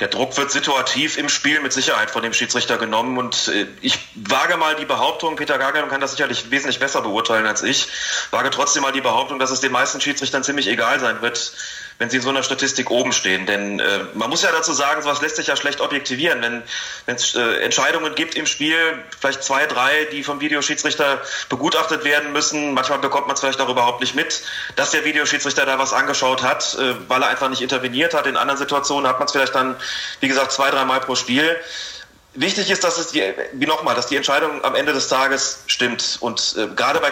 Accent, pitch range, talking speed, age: German, 130-145 Hz, 220 wpm, 30-49